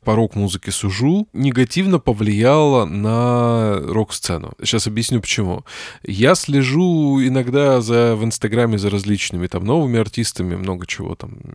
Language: Russian